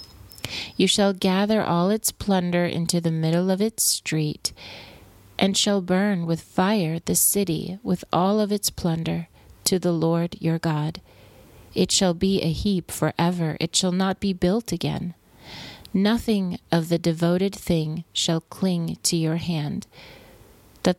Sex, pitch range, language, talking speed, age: female, 155-190 Hz, English, 150 wpm, 30-49